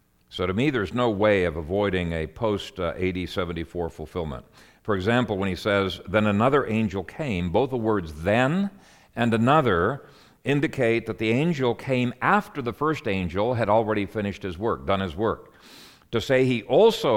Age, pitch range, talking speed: 50-69, 95-120 Hz, 170 wpm